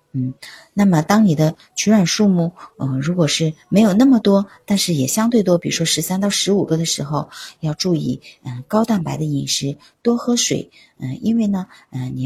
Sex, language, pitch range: female, Chinese, 145-195 Hz